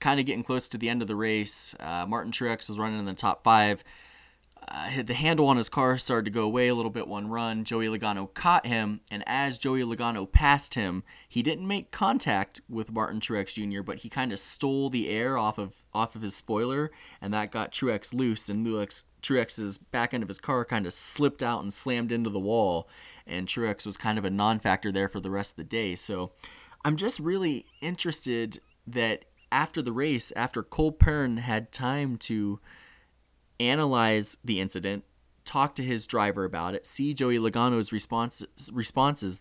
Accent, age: American, 20-39